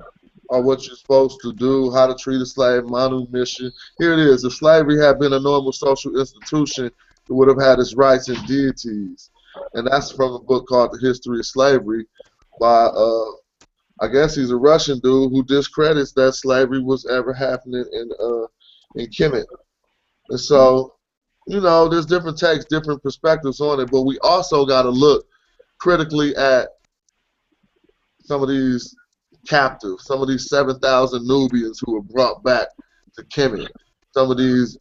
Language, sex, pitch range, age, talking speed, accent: English, male, 125-140 Hz, 20-39, 170 wpm, American